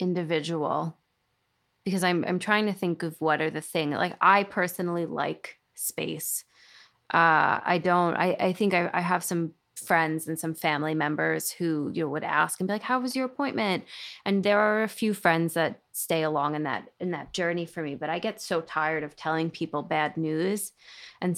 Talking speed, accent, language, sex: 200 wpm, American, English, female